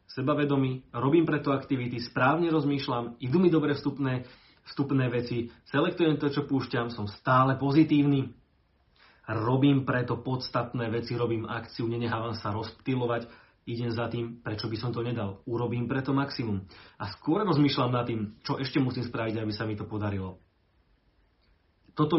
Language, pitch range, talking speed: Slovak, 105-130 Hz, 145 wpm